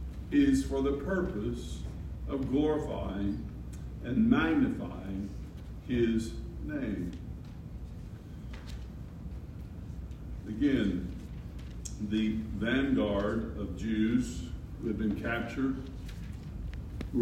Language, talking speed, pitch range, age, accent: English, 70 wpm, 100-135 Hz, 60-79, American